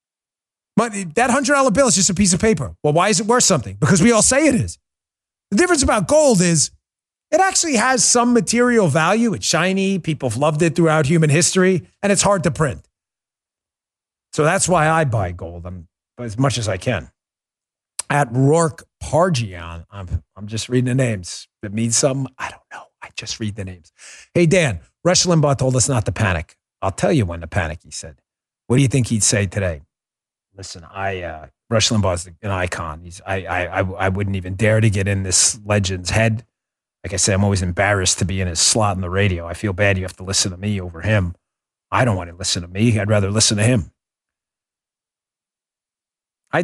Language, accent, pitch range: English, American, 95-150 Hz